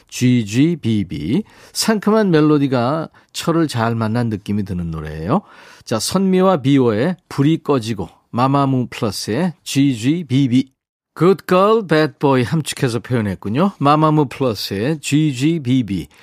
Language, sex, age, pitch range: Korean, male, 40-59, 115-175 Hz